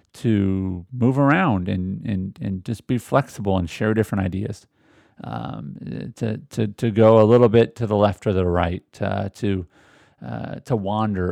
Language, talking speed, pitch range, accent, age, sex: English, 170 wpm, 100-130 Hz, American, 40-59, male